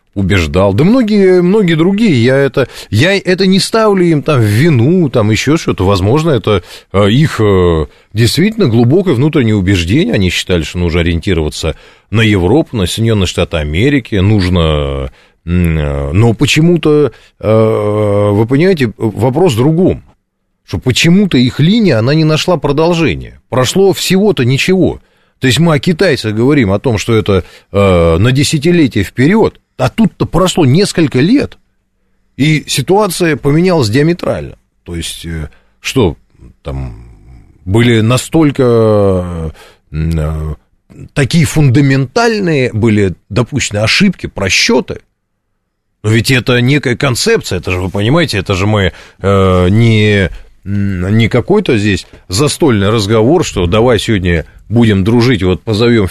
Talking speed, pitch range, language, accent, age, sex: 120 wpm, 90-140 Hz, Russian, native, 30-49, male